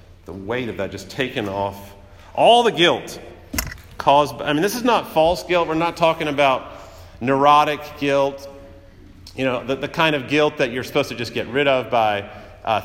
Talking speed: 190 wpm